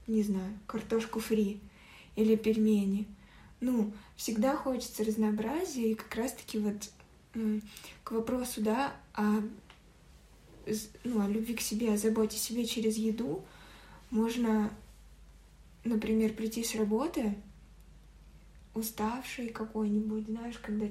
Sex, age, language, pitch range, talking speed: female, 20-39, Russian, 215-245 Hz, 110 wpm